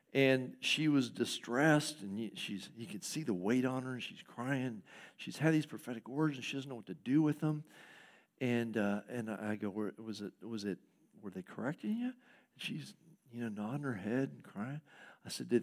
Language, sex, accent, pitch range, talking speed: English, male, American, 135-220 Hz, 205 wpm